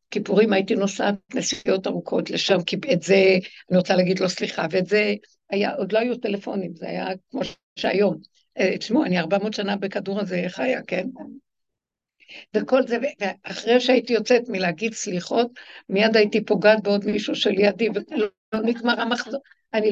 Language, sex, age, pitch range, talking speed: Hebrew, female, 60-79, 200-250 Hz, 155 wpm